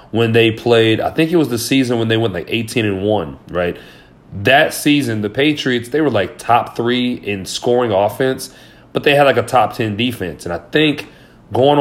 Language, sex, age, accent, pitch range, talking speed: English, male, 30-49, American, 105-140 Hz, 210 wpm